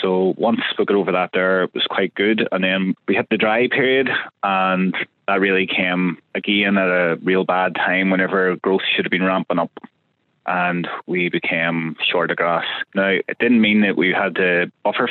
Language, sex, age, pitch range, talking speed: English, male, 20-39, 90-105 Hz, 200 wpm